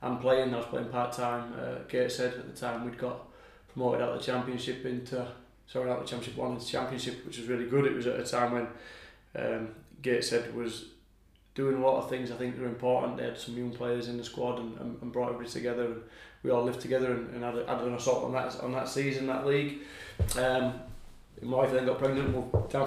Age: 20-39